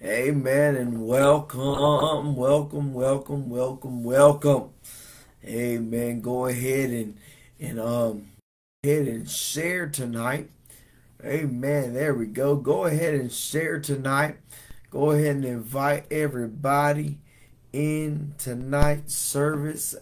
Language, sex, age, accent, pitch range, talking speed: English, male, 20-39, American, 130-150 Hz, 100 wpm